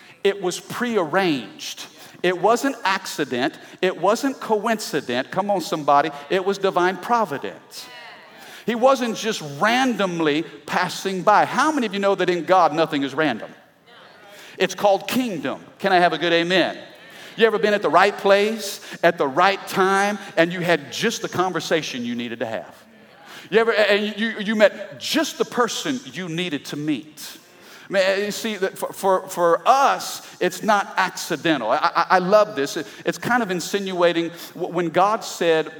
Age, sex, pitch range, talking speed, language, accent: 50-69, male, 160-205 Hz, 160 wpm, English, American